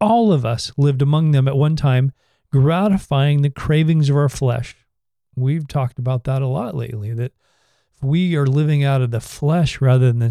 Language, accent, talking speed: English, American, 190 wpm